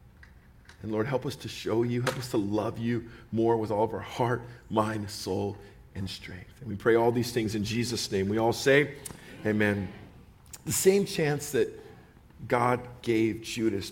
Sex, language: male, English